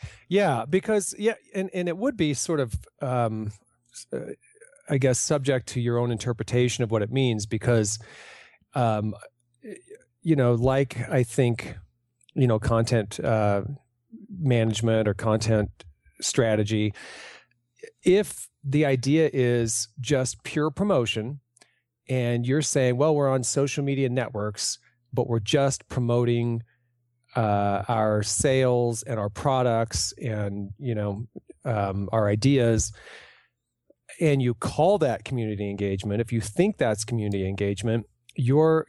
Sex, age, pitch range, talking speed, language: male, 40-59, 110-140 Hz, 125 wpm, English